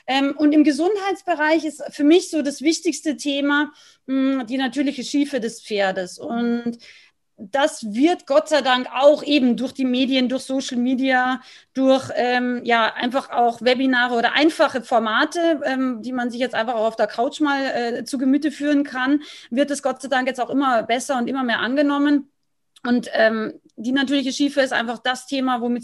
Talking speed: 185 wpm